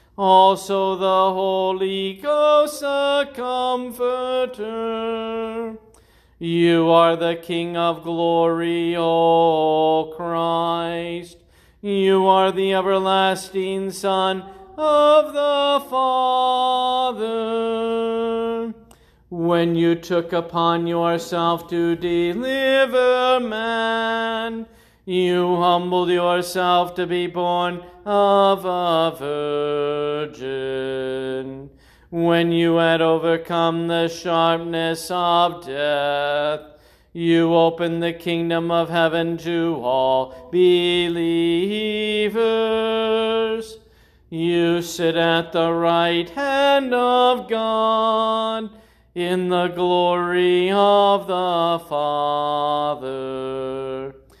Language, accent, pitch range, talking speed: English, American, 165-220 Hz, 75 wpm